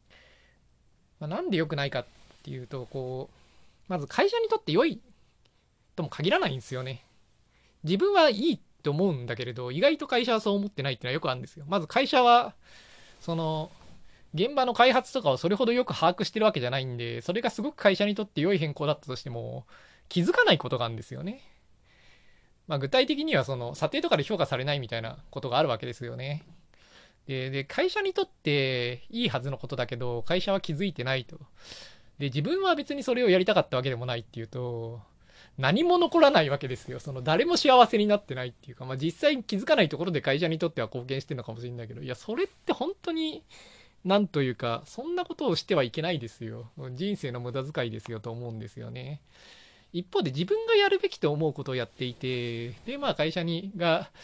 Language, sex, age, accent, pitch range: Japanese, male, 20-39, native, 125-200 Hz